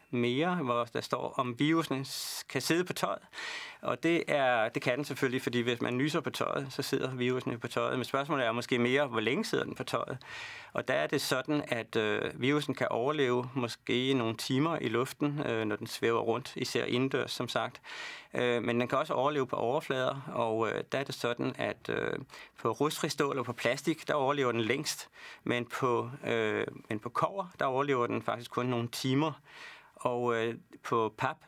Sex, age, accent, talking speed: male, 30-49, native, 200 wpm